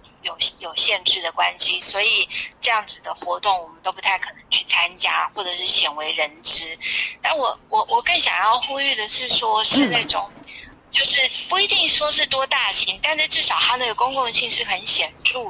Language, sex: Chinese, female